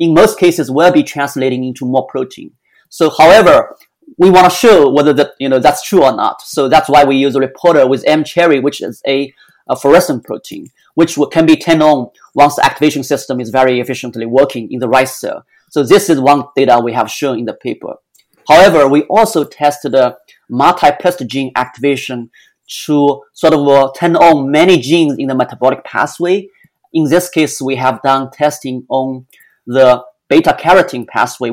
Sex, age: male, 30-49